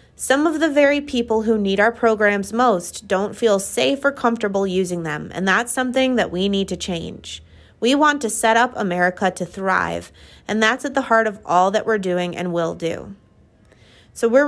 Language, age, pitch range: English, 30-49, 180-235 Hz